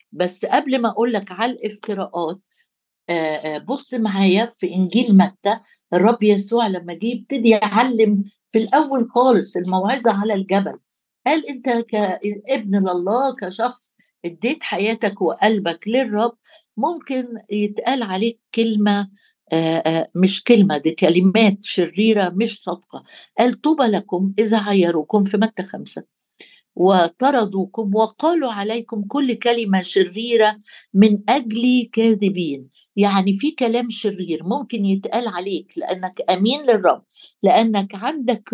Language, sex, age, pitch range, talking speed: Arabic, female, 60-79, 195-235 Hz, 115 wpm